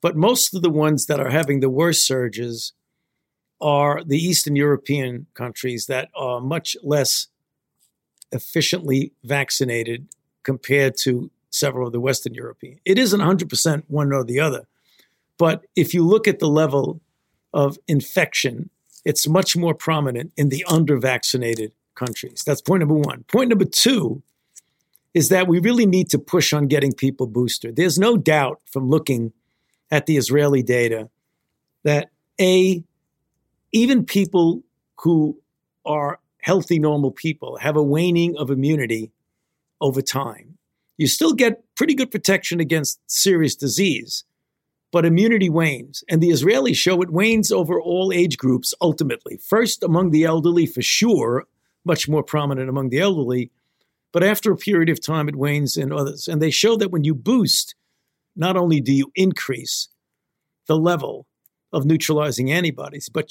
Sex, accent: male, American